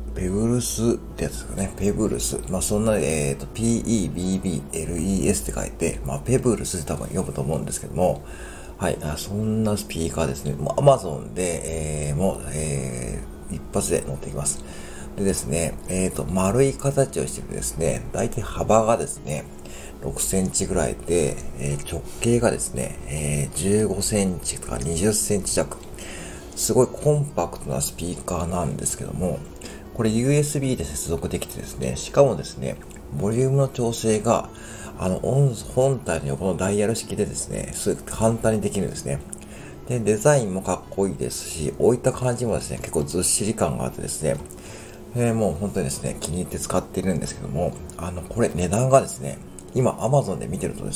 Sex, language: male, Japanese